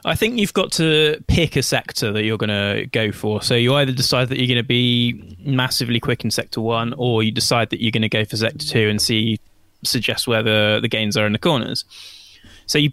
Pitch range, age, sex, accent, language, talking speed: 105-125 Hz, 20-39, male, British, English, 240 wpm